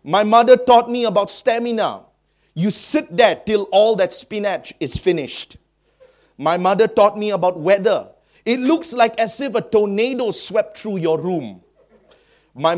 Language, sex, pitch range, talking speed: English, male, 145-215 Hz, 155 wpm